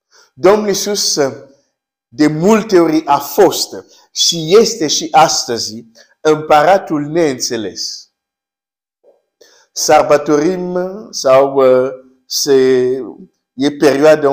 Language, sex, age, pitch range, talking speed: Romanian, male, 50-69, 130-180 Hz, 75 wpm